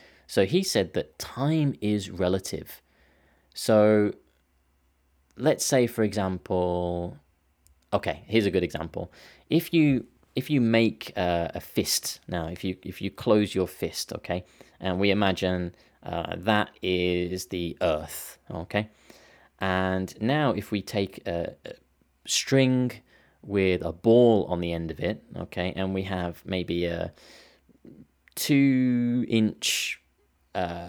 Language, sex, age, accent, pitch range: Japanese, male, 20-39, British, 85-105 Hz